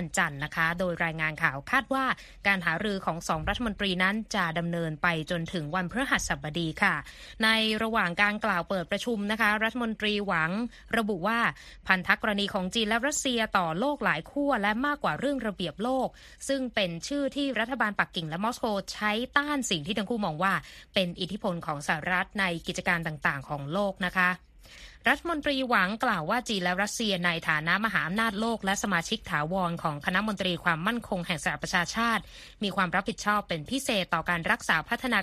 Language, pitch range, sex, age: Thai, 175-230 Hz, female, 20-39